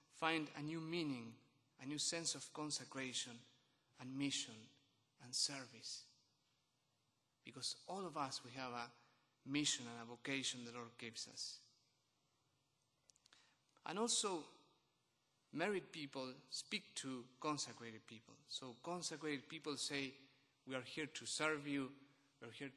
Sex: male